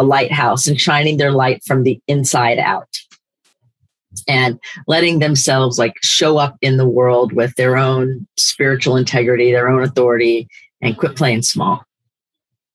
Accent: American